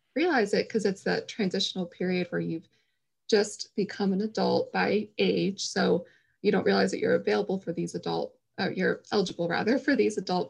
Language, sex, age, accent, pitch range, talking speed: English, female, 20-39, American, 175-215 Hz, 175 wpm